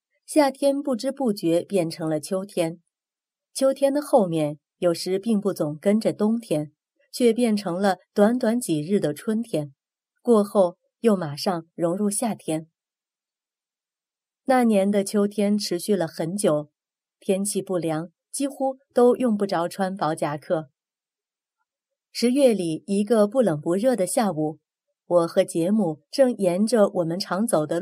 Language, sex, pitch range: Chinese, female, 165-225 Hz